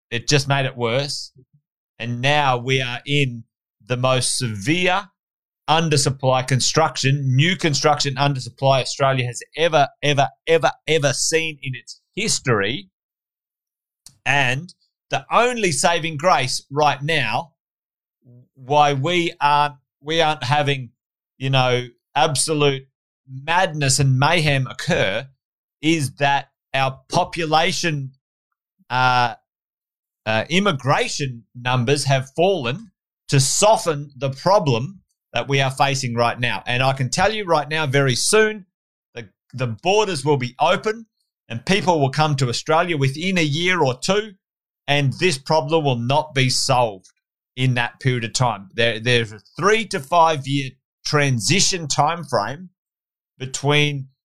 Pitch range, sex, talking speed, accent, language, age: 130-160 Hz, male, 125 wpm, Australian, English, 30-49